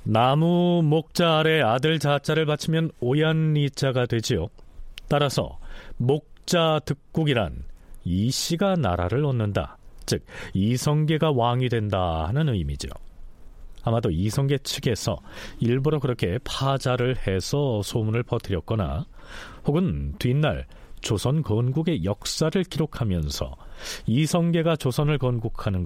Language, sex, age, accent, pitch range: Korean, male, 40-59, native, 100-155 Hz